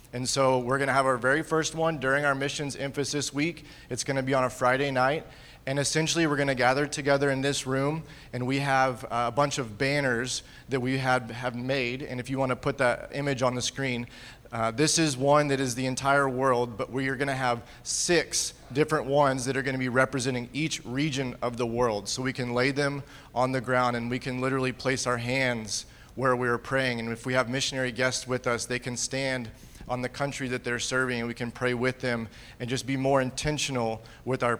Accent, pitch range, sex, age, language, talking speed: American, 125-140 Hz, male, 30-49, English, 230 wpm